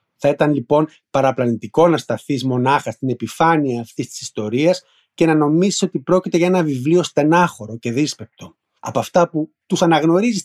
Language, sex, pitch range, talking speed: Greek, male, 130-170 Hz, 160 wpm